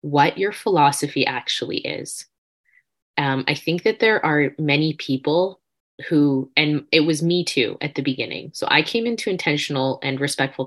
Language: English